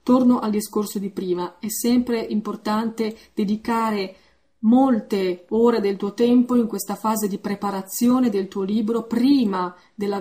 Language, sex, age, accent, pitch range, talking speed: Italian, female, 30-49, native, 200-235 Hz, 140 wpm